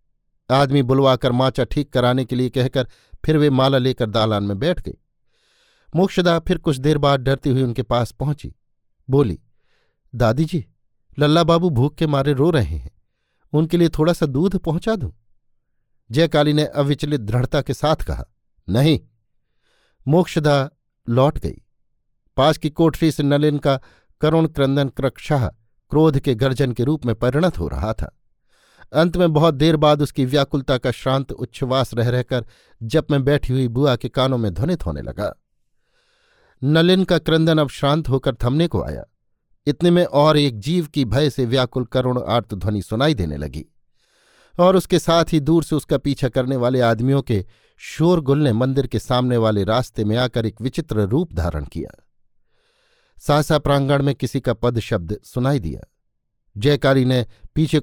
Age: 50-69